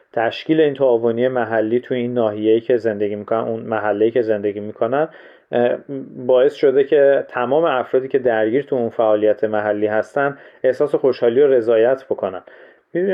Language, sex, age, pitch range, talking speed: Persian, male, 40-59, 115-140 Hz, 145 wpm